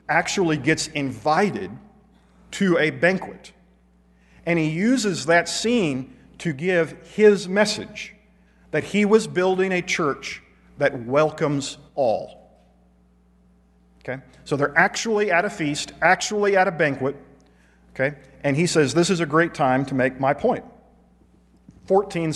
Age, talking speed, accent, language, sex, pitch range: 50-69, 130 wpm, American, English, male, 135-180 Hz